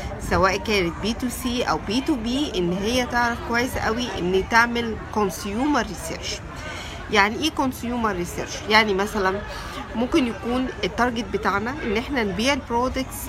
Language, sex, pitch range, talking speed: Arabic, female, 190-245 Hz, 145 wpm